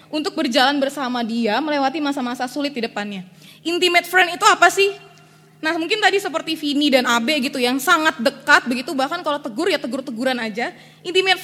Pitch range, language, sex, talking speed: 235-315 Hz, Indonesian, female, 175 wpm